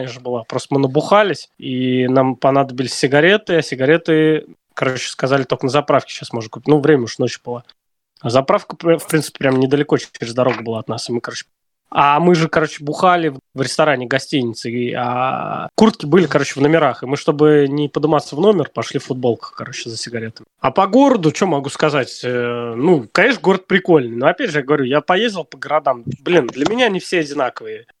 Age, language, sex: 20-39, Russian, male